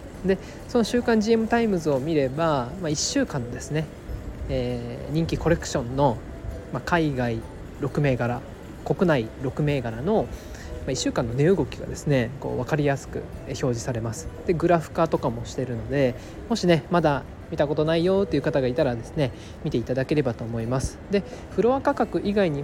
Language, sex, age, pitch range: Japanese, male, 20-39, 125-180 Hz